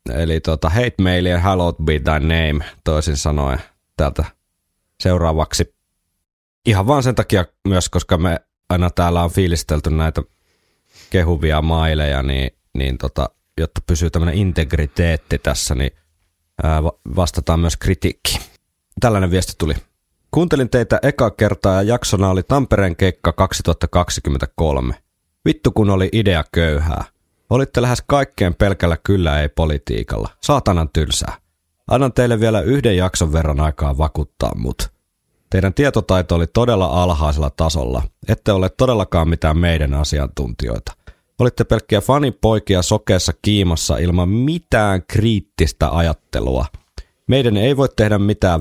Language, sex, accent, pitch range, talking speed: Finnish, male, native, 80-100 Hz, 125 wpm